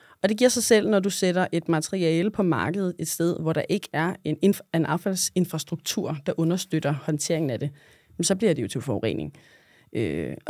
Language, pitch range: Danish, 155-185 Hz